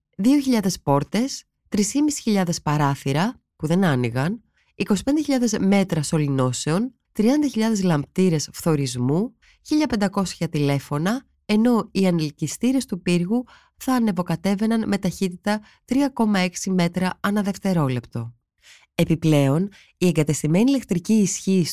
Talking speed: 90 wpm